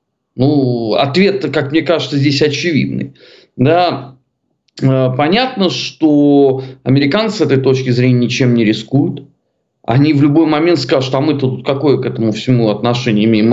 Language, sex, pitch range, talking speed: Russian, male, 125-150 Hz, 140 wpm